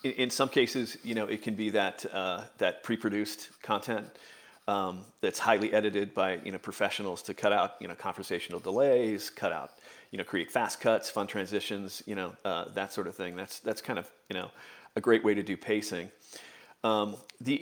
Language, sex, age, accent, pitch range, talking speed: English, male, 40-59, American, 105-120 Hz, 200 wpm